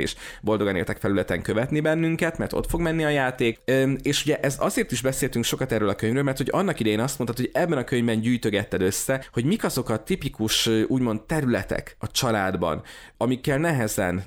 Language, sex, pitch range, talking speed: Hungarian, male, 105-130 Hz, 190 wpm